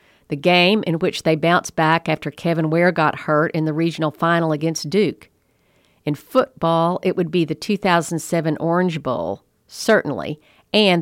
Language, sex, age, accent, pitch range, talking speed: English, female, 50-69, American, 155-180 Hz, 160 wpm